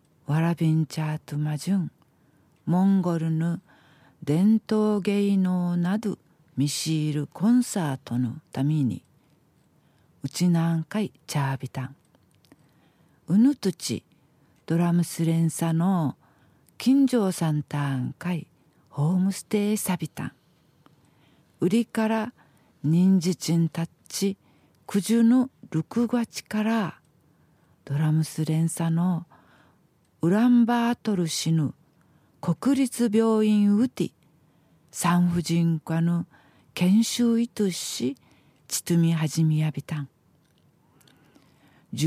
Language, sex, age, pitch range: Japanese, female, 50-69, 155-200 Hz